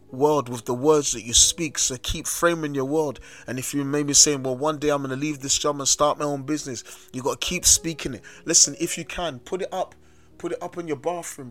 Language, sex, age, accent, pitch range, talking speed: English, male, 30-49, British, 140-170 Hz, 265 wpm